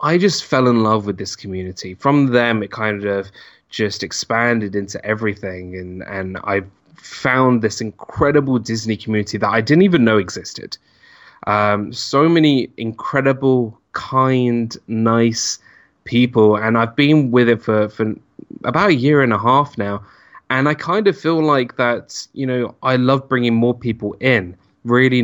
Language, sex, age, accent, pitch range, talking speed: English, male, 10-29, British, 105-130 Hz, 160 wpm